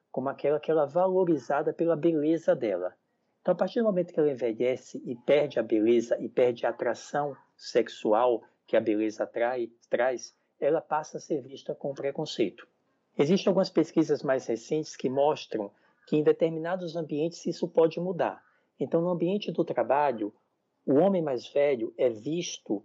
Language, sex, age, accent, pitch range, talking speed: Portuguese, male, 60-79, Brazilian, 145-185 Hz, 165 wpm